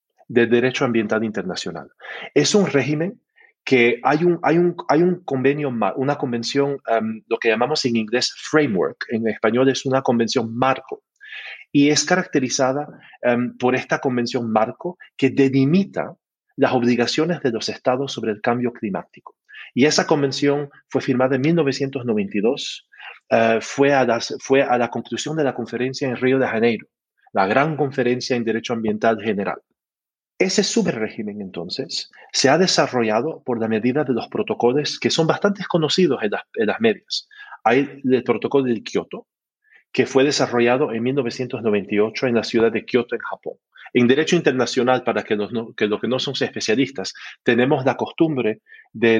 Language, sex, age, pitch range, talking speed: Spanish, male, 40-59, 115-145 Hz, 160 wpm